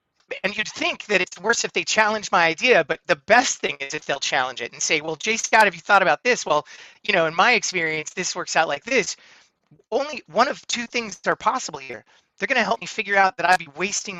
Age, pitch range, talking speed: 30-49, 170-220 Hz, 255 wpm